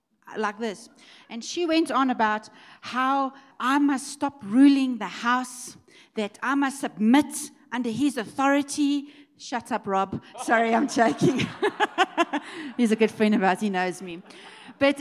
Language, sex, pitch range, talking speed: English, female, 210-290 Hz, 150 wpm